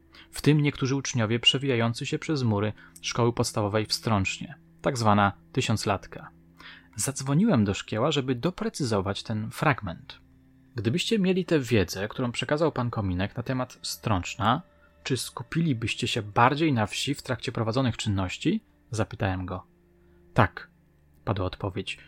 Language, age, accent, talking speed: Polish, 20-39, native, 130 wpm